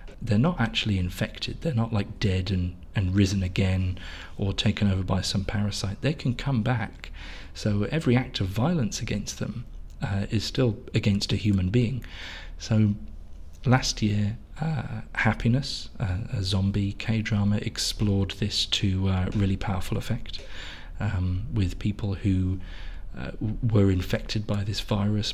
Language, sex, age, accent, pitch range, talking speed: English, male, 40-59, British, 95-110 Hz, 145 wpm